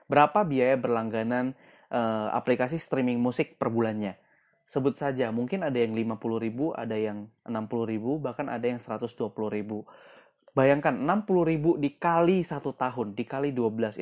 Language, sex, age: Indonesian, male, 20-39